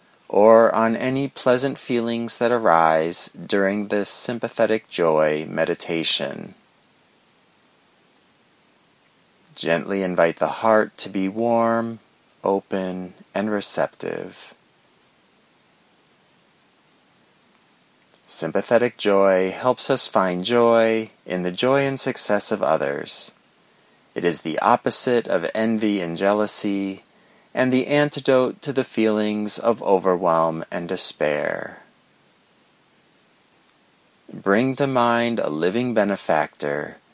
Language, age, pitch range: English, 30-49, 95-130 Hz